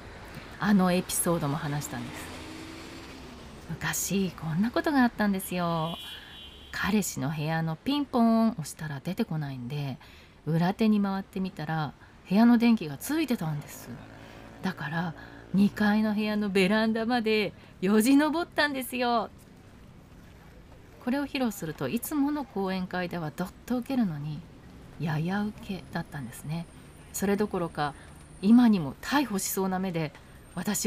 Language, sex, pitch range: Japanese, female, 145-210 Hz